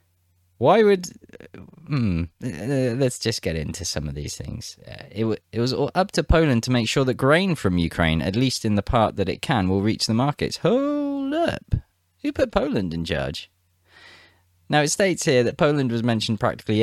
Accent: British